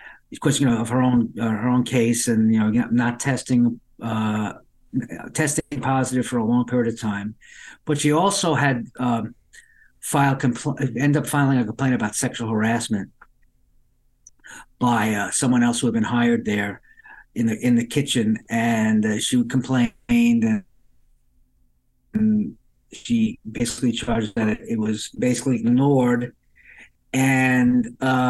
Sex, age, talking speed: male, 50-69, 150 wpm